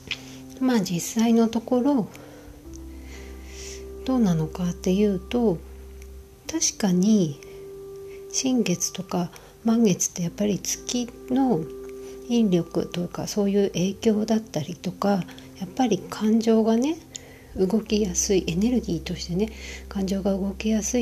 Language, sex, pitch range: Japanese, female, 160-225 Hz